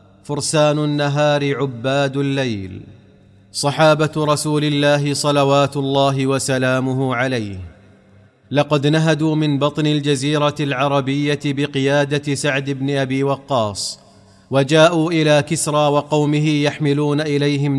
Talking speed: 95 wpm